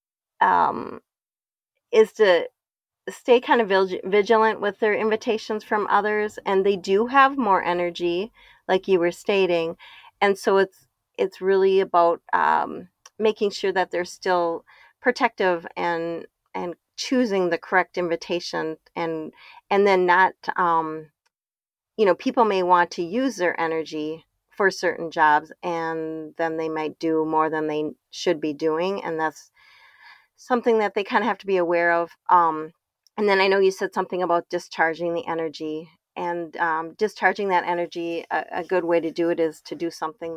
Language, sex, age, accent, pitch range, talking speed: English, female, 30-49, American, 160-195 Hz, 160 wpm